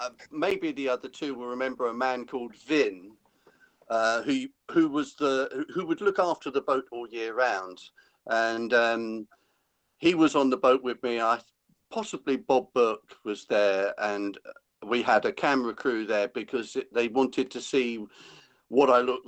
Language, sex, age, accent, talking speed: English, male, 50-69, British, 170 wpm